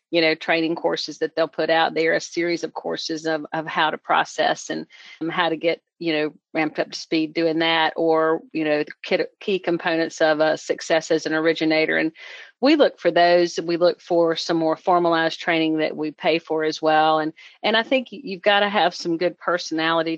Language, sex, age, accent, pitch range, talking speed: English, female, 40-59, American, 155-175 Hz, 220 wpm